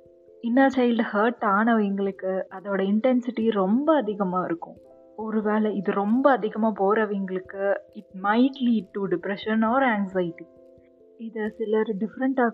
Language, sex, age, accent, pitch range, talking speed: Tamil, female, 20-39, native, 190-230 Hz, 115 wpm